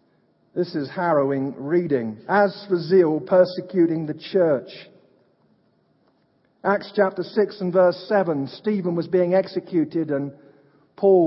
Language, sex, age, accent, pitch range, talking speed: English, male, 50-69, British, 150-190 Hz, 115 wpm